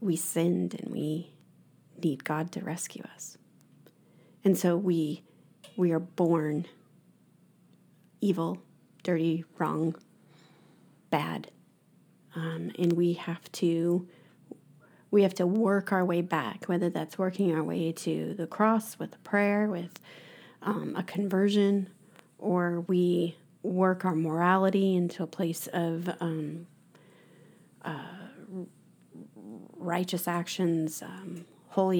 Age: 40-59